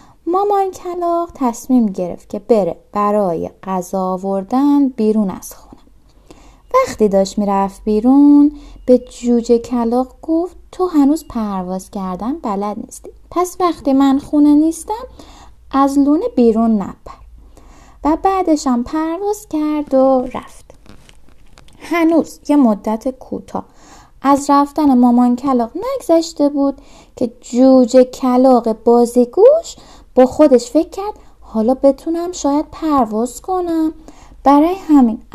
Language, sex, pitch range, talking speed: Persian, female, 230-315 Hz, 110 wpm